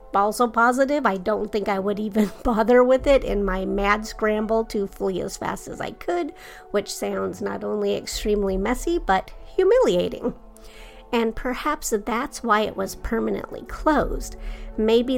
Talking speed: 155 wpm